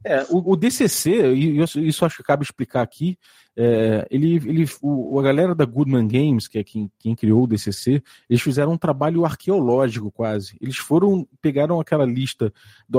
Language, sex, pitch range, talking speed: Portuguese, male, 130-185 Hz, 175 wpm